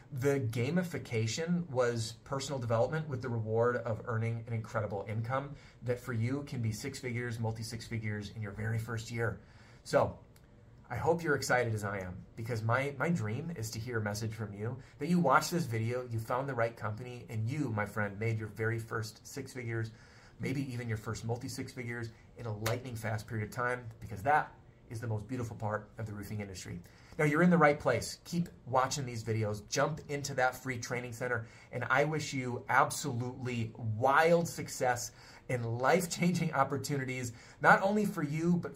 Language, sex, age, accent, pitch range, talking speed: English, male, 30-49, American, 115-140 Hz, 185 wpm